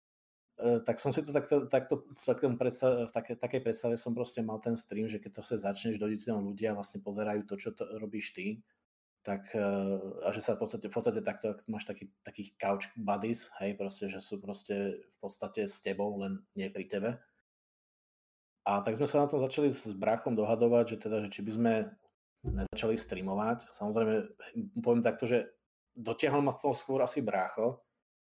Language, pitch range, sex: Czech, 100-125 Hz, male